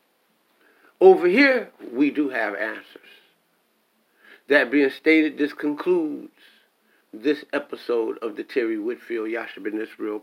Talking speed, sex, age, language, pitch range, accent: 115 wpm, male, 50-69, English, 130-185 Hz, American